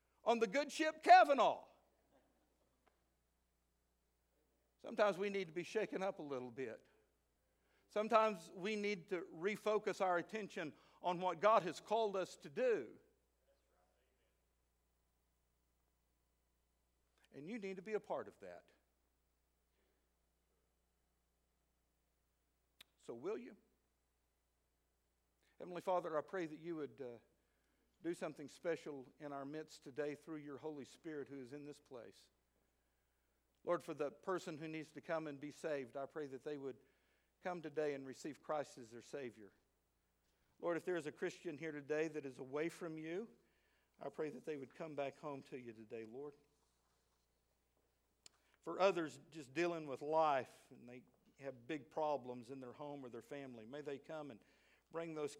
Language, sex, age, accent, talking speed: English, male, 60-79, American, 150 wpm